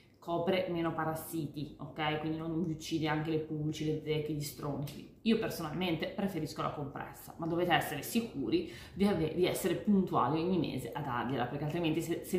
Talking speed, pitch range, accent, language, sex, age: 175 wpm, 140-180 Hz, native, Italian, female, 30-49